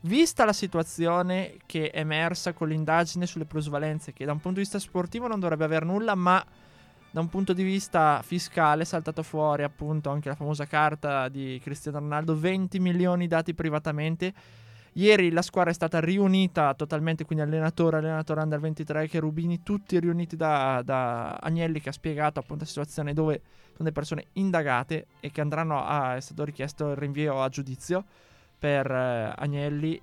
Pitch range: 150-180 Hz